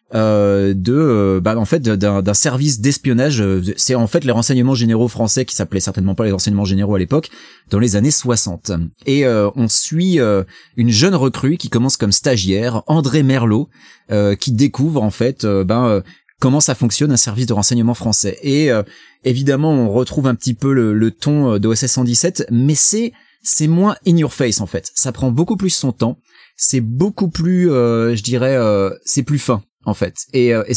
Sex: male